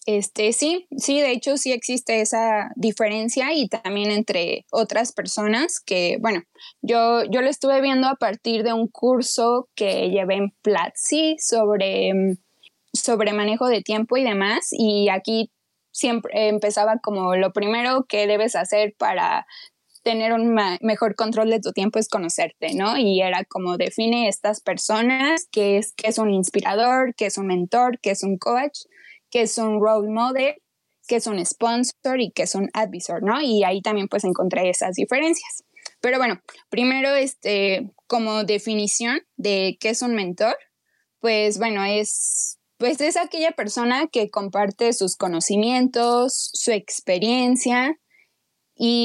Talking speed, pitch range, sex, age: 155 wpm, 205-250 Hz, female, 10-29